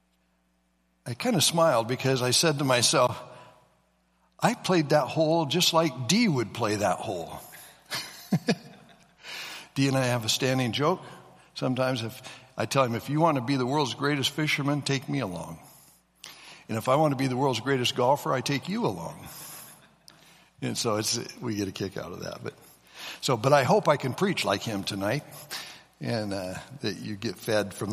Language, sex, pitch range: English, male, 110-145 Hz